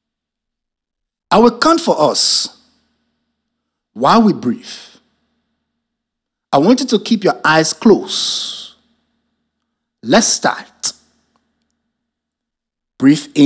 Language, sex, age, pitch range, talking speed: English, male, 60-79, 180-245 Hz, 85 wpm